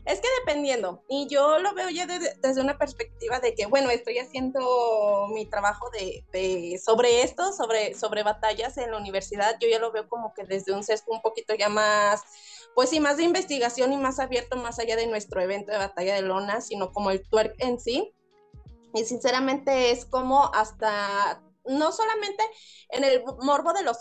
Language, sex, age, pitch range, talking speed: Spanish, female, 20-39, 220-275 Hz, 190 wpm